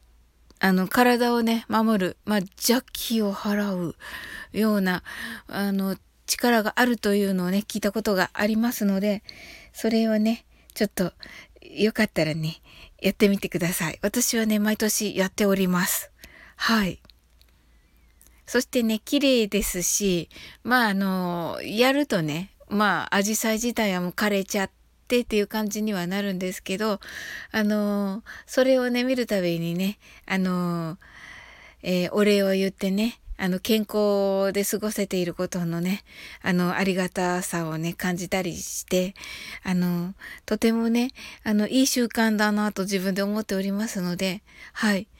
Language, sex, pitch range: Japanese, female, 185-225 Hz